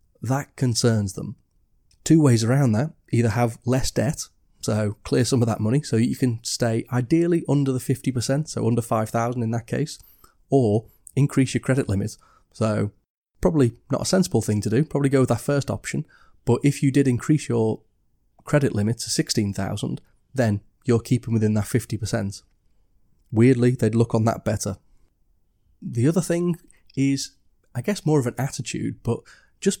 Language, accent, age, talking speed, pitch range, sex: English, British, 30-49, 170 wpm, 110-140 Hz, male